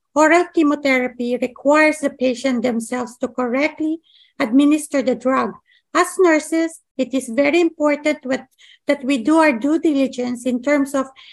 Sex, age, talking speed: female, 50-69, 140 wpm